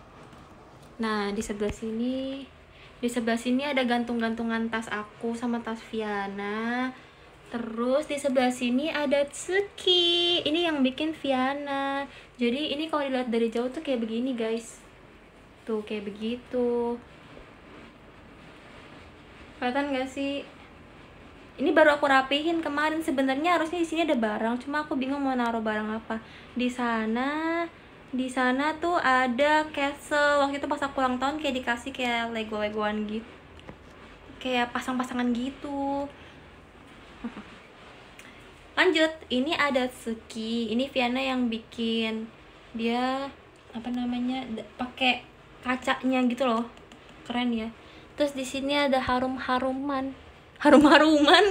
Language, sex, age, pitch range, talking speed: Malay, female, 20-39, 235-285 Hz, 125 wpm